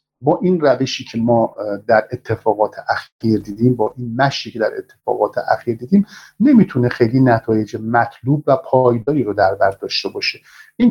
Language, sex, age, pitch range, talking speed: Persian, male, 50-69, 125-170 Hz, 160 wpm